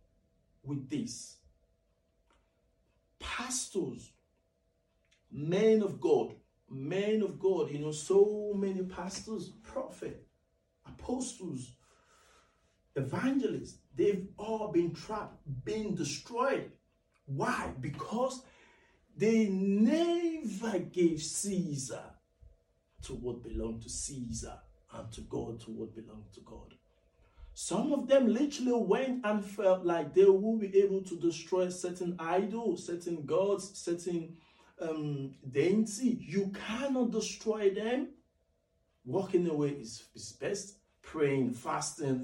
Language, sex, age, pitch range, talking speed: English, male, 50-69, 170-220 Hz, 105 wpm